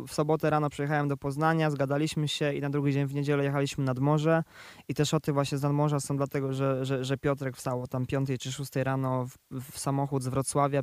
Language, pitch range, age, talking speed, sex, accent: Polish, 140-160 Hz, 20-39, 235 wpm, male, native